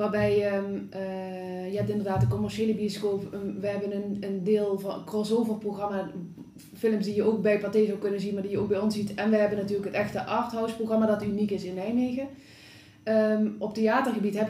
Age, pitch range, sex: 20-39, 205-225 Hz, female